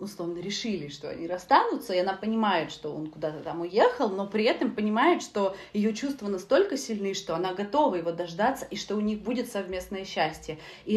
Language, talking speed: Russian, 190 wpm